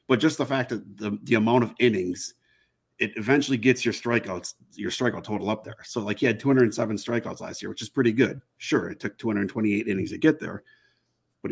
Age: 30-49